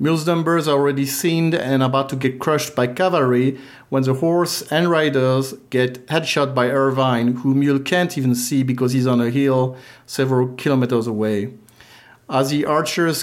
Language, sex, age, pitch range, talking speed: English, male, 40-59, 125-145 Hz, 170 wpm